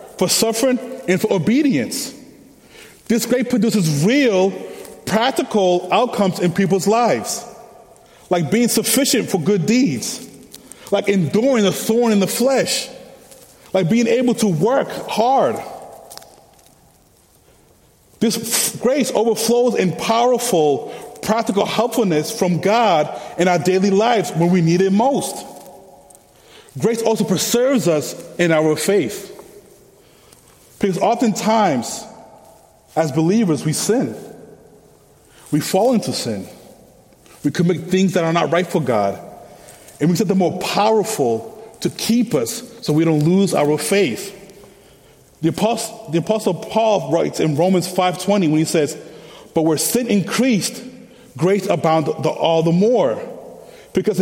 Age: 30-49